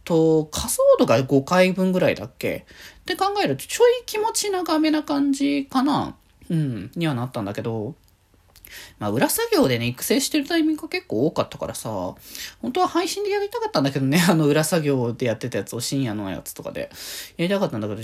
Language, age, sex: Japanese, 20-39, male